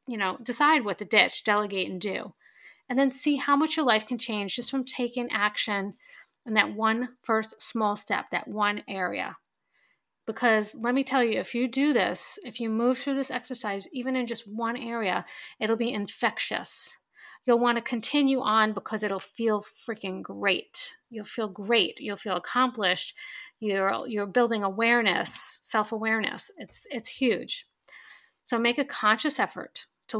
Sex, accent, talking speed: female, American, 165 wpm